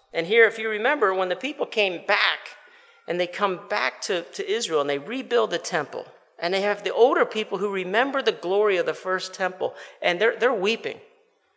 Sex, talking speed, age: male, 205 wpm, 50-69